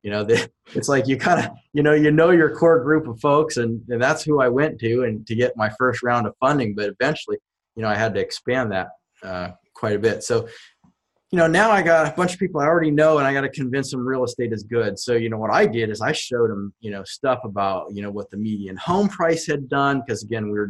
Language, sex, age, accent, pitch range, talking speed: English, male, 30-49, American, 105-140 Hz, 275 wpm